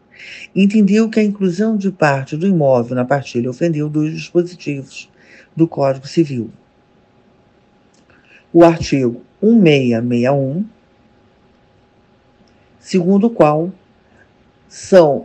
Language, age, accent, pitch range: Portuguese, 50-69, Brazilian, 140-190 Hz